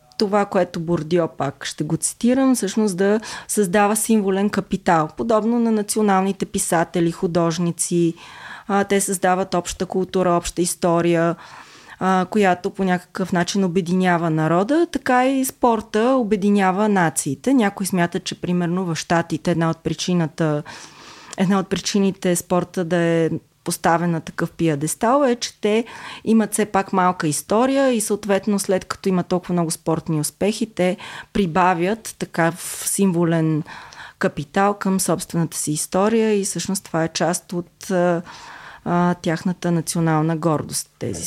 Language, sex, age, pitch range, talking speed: Bulgarian, female, 20-39, 170-210 Hz, 135 wpm